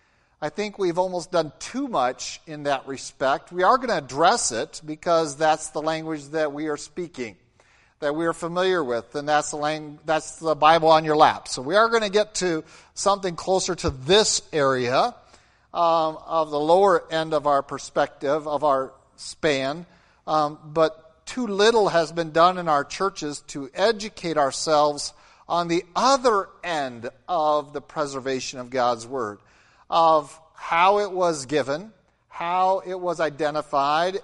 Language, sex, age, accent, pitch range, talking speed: English, male, 50-69, American, 145-175 Hz, 160 wpm